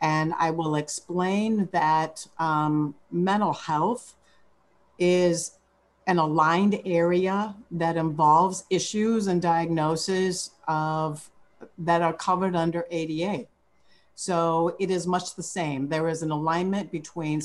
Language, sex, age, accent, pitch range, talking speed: English, female, 50-69, American, 155-175 Hz, 115 wpm